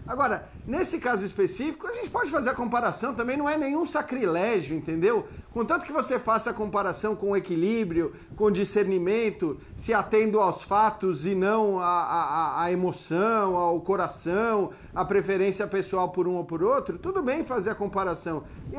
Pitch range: 195-235 Hz